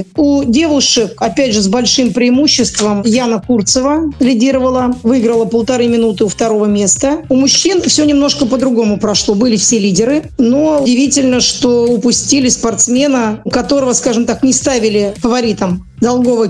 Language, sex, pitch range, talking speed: Russian, female, 225-260 Hz, 140 wpm